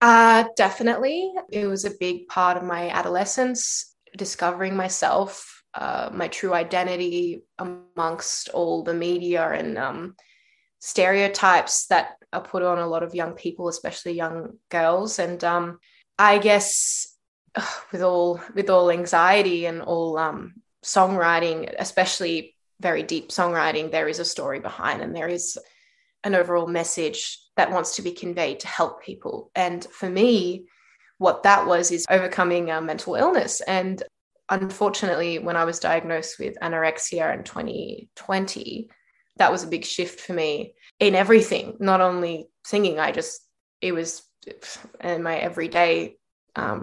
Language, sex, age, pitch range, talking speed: English, female, 20-39, 170-205 Hz, 145 wpm